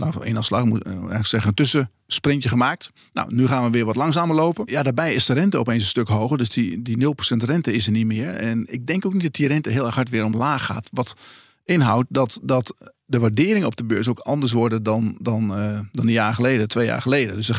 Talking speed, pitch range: 240 wpm, 115-140 Hz